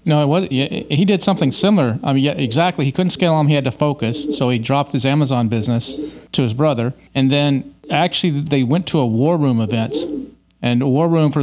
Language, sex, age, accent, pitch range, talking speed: English, male, 40-59, American, 125-155 Hz, 225 wpm